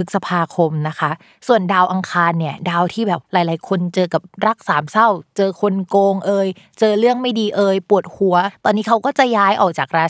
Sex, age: female, 20-39